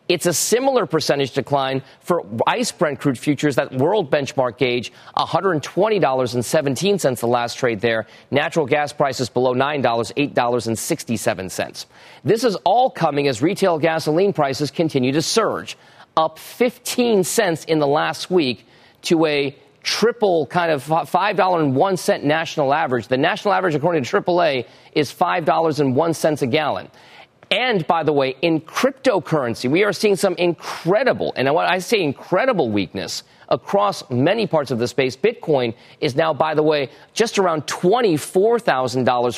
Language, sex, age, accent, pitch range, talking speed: English, male, 40-59, American, 130-175 Hz, 145 wpm